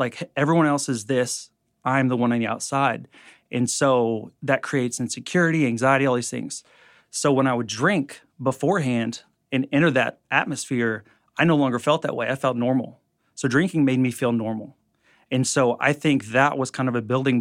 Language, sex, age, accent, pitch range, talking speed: English, male, 30-49, American, 120-140 Hz, 190 wpm